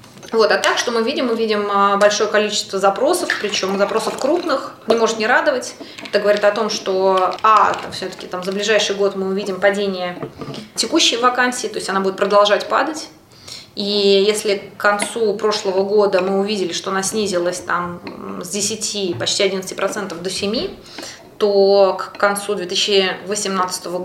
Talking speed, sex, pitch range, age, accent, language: 155 wpm, female, 185-210 Hz, 20-39, native, Russian